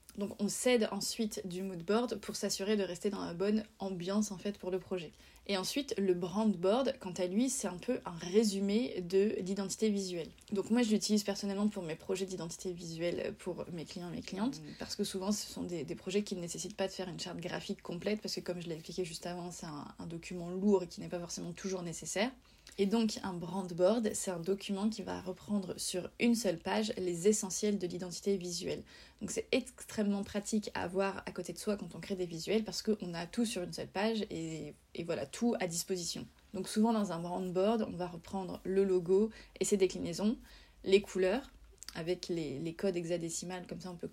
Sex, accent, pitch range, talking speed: female, French, 180-210 Hz, 220 wpm